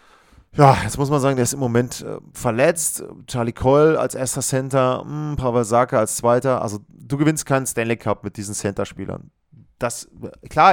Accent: German